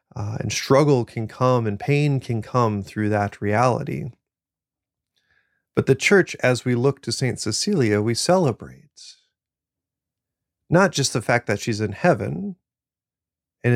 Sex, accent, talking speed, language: male, American, 140 wpm, English